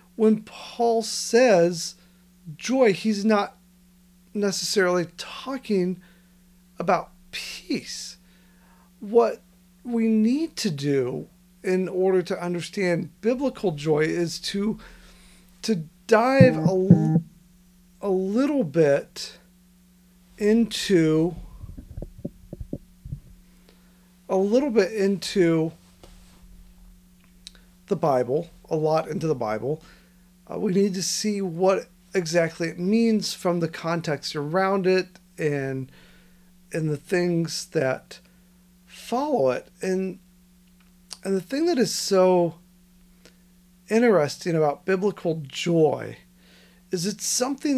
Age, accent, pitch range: 40-59, American, 175-195 Hz